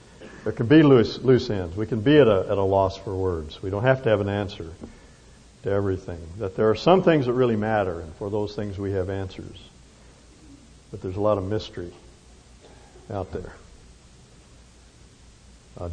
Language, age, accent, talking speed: English, 60-79, American, 185 wpm